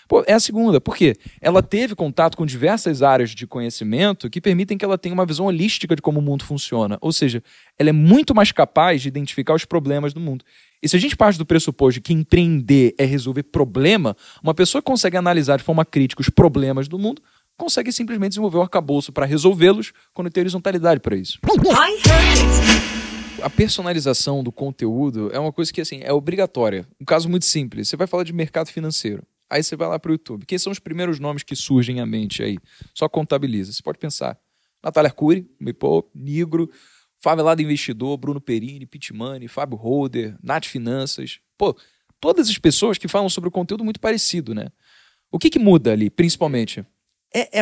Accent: Brazilian